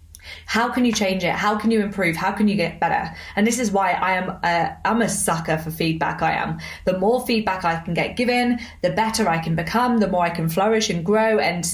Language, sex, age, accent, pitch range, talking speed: English, female, 20-39, British, 170-220 Hz, 245 wpm